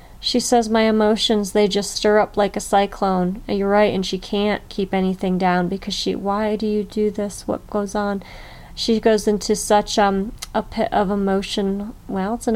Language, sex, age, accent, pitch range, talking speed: English, female, 30-49, American, 195-230 Hz, 195 wpm